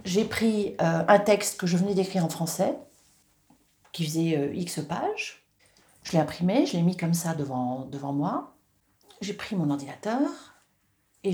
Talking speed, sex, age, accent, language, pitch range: 170 wpm, female, 40-59, French, French, 170-230 Hz